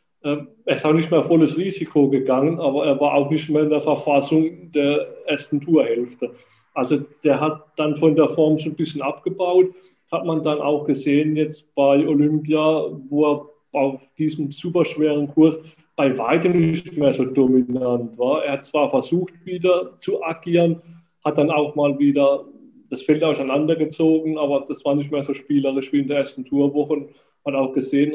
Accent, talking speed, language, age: German, 175 wpm, German, 20-39